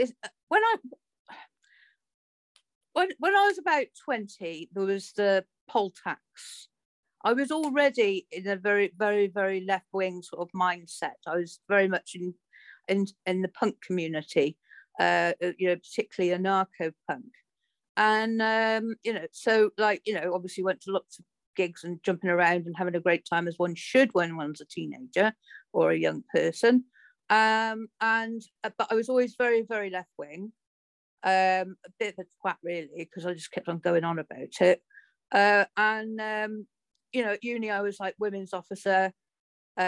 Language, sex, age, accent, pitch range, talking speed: English, female, 50-69, British, 180-225 Hz, 170 wpm